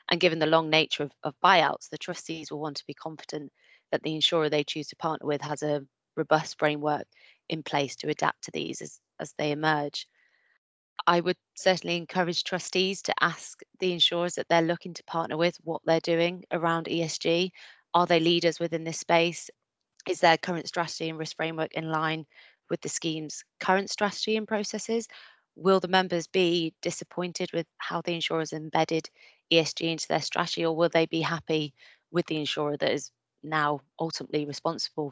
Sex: female